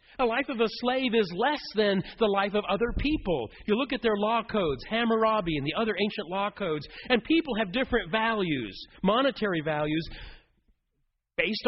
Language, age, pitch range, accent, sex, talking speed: English, 40-59, 165-235 Hz, American, male, 175 wpm